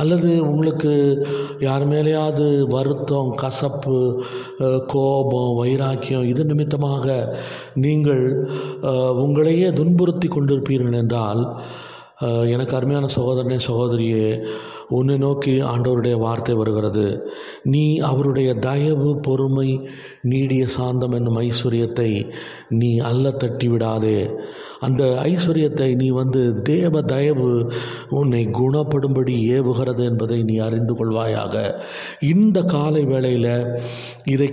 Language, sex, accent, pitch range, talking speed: Tamil, male, native, 120-140 Hz, 90 wpm